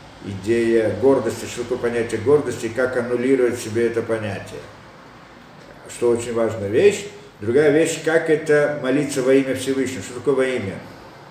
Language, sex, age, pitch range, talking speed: Russian, male, 50-69, 120-180 Hz, 145 wpm